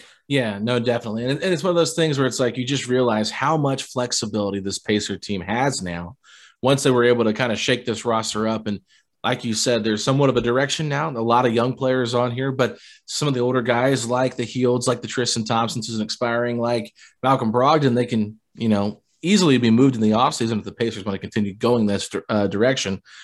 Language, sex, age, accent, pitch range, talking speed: English, male, 30-49, American, 110-135 Hz, 230 wpm